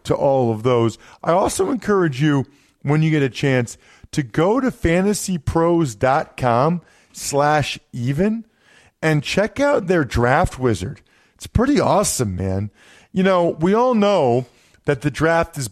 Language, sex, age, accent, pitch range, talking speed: English, male, 40-59, American, 120-160 Hz, 140 wpm